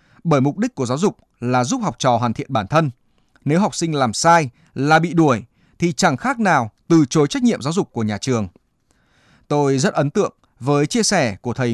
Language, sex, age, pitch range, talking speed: Vietnamese, male, 20-39, 125-170 Hz, 225 wpm